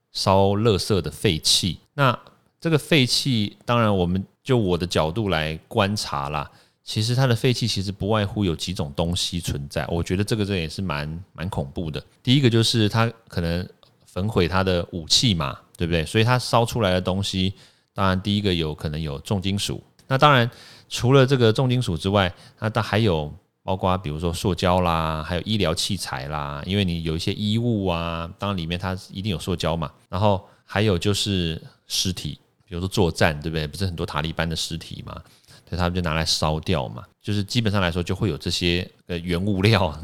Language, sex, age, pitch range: Chinese, male, 30-49, 85-105 Hz